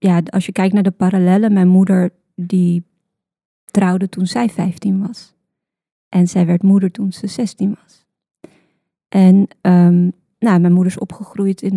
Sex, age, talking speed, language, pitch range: female, 20-39, 160 wpm, Dutch, 185-205 Hz